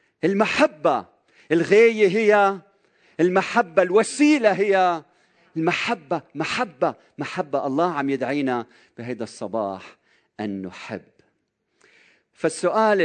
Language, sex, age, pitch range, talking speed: Arabic, male, 40-59, 135-185 Hz, 80 wpm